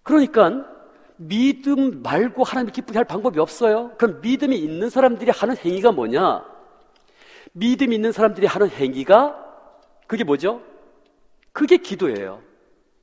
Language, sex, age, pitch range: Korean, male, 40-59, 200-250 Hz